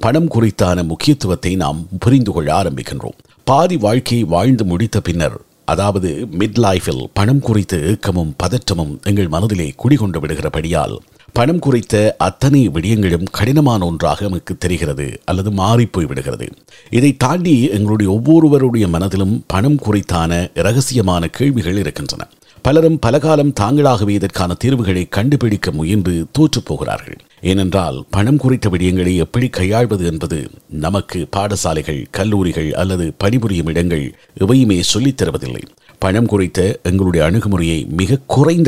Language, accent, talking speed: Tamil, native, 115 wpm